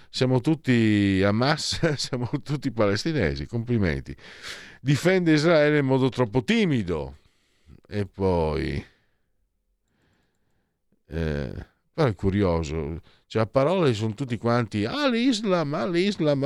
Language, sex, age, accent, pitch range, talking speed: Italian, male, 50-69, native, 90-135 Hz, 110 wpm